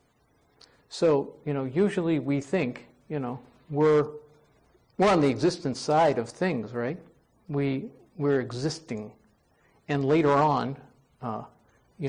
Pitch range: 125-150 Hz